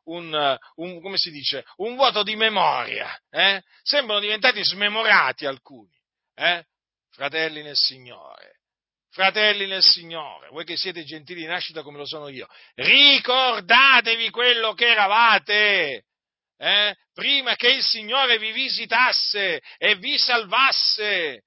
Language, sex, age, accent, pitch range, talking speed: Italian, male, 50-69, native, 135-205 Hz, 125 wpm